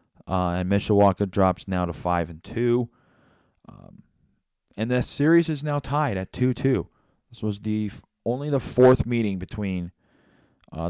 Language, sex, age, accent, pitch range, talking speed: English, male, 30-49, American, 95-125 Hz, 155 wpm